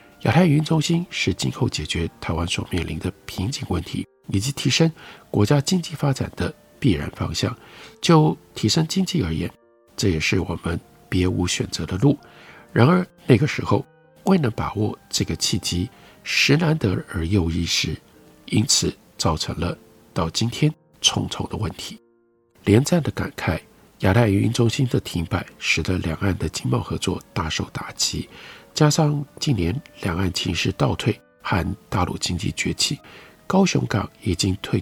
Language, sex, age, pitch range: Chinese, male, 50-69, 95-150 Hz